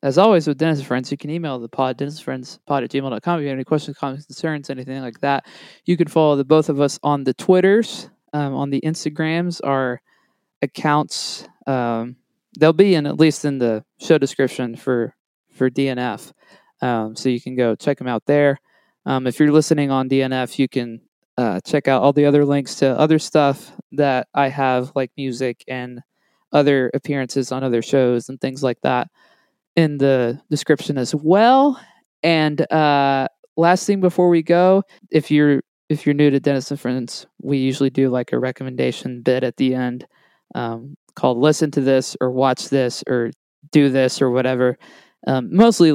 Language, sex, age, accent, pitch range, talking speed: English, male, 20-39, American, 130-155 Hz, 185 wpm